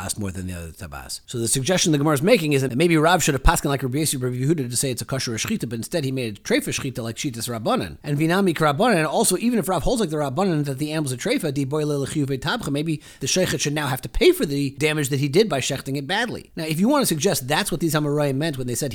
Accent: American